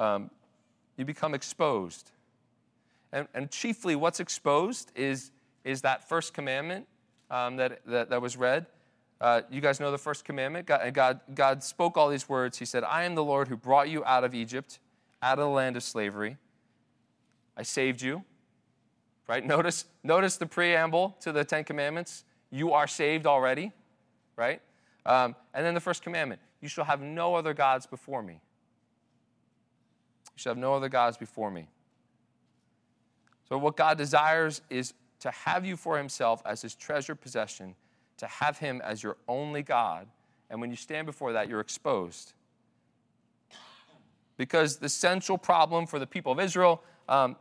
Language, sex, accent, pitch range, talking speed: English, male, American, 125-160 Hz, 160 wpm